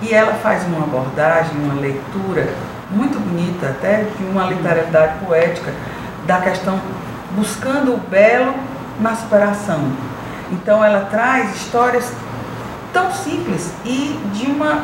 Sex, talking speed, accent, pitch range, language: female, 120 wpm, Brazilian, 165-230 Hz, Portuguese